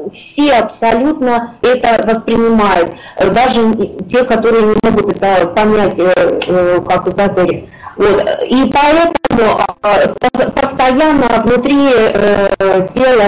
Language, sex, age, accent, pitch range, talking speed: Russian, female, 20-39, native, 200-255 Hz, 80 wpm